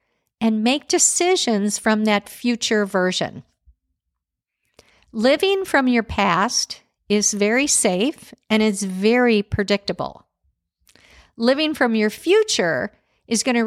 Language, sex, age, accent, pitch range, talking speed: English, female, 50-69, American, 205-275 Hz, 110 wpm